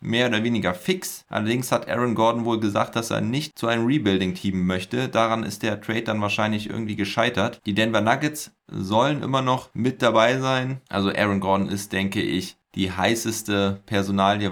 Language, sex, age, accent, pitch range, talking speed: German, male, 20-39, German, 100-115 Hz, 180 wpm